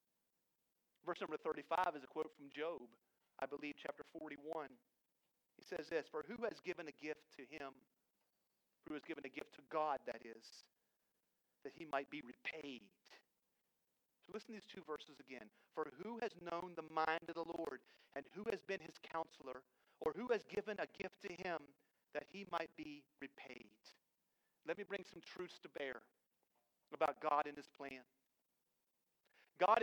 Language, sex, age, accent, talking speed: English, male, 40-59, American, 170 wpm